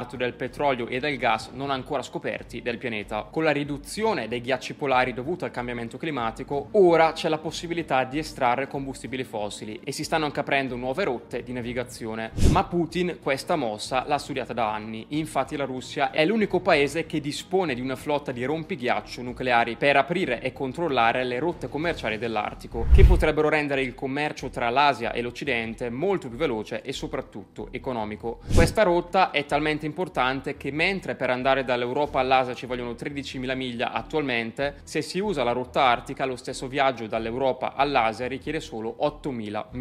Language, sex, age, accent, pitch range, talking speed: Italian, male, 20-39, native, 125-155 Hz, 170 wpm